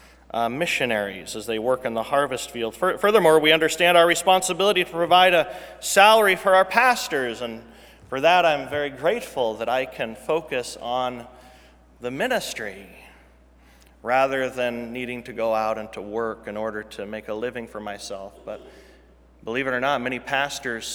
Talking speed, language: 165 wpm, English